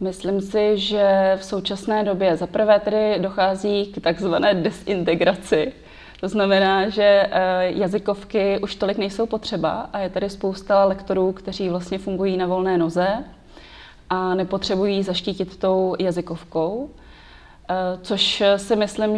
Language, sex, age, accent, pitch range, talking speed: Czech, female, 20-39, native, 170-195 Hz, 120 wpm